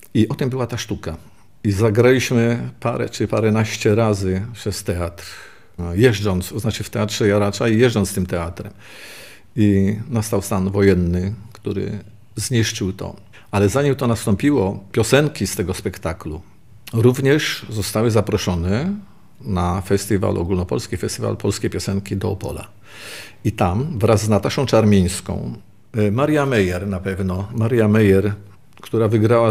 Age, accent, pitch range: 50-69, native, 100-115 Hz